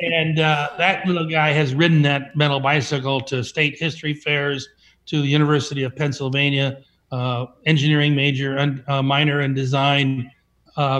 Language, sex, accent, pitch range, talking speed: English, male, American, 135-155 Hz, 155 wpm